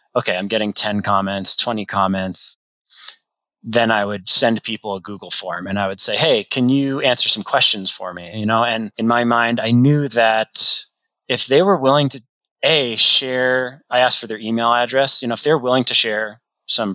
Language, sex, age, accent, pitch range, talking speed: English, male, 20-39, American, 105-130 Hz, 200 wpm